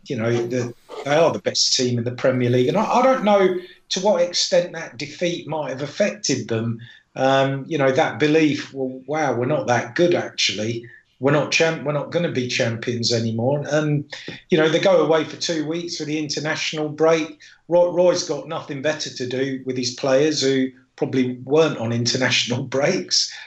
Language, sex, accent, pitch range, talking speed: English, male, British, 130-165 Hz, 190 wpm